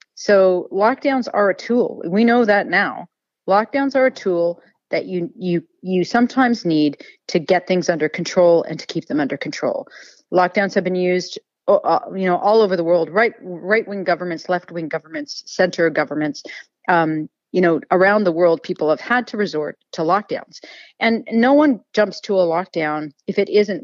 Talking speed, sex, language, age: 180 wpm, female, English, 40-59